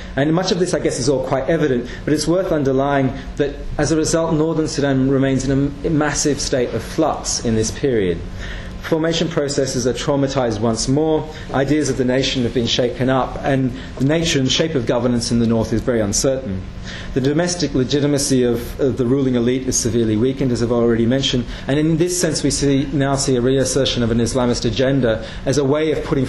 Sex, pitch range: male, 110-140 Hz